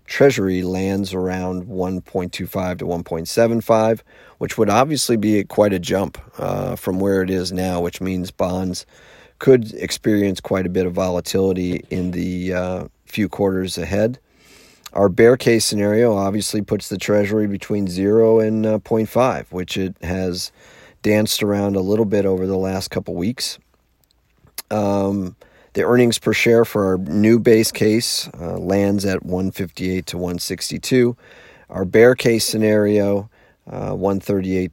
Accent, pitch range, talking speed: American, 95-110 Hz, 145 wpm